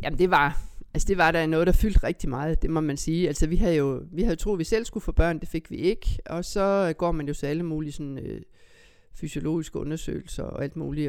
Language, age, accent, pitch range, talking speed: Danish, 50-69, native, 145-175 Hz, 260 wpm